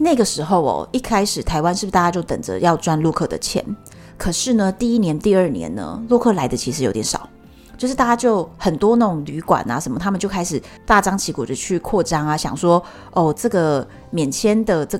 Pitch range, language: 165-230 Hz, Chinese